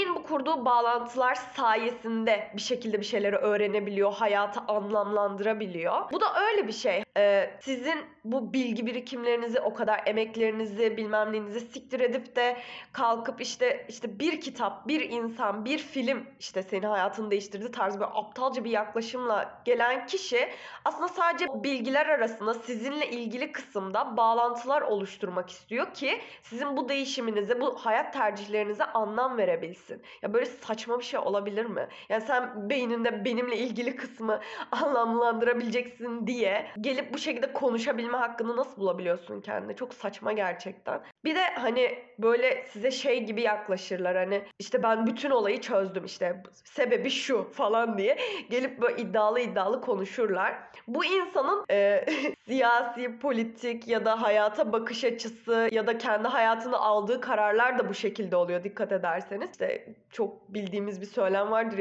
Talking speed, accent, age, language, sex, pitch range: 140 wpm, native, 10-29, Turkish, female, 210-270 Hz